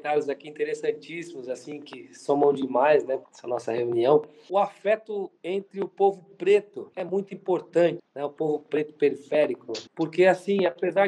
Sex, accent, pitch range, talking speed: male, Brazilian, 155-205 Hz, 150 wpm